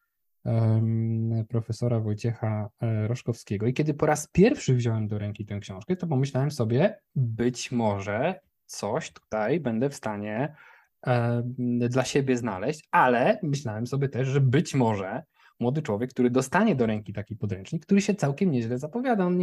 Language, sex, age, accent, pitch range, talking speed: Polish, male, 20-39, native, 120-160 Hz, 145 wpm